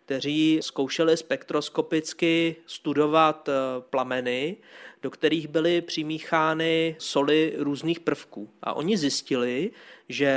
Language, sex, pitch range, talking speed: Czech, male, 135-160 Hz, 95 wpm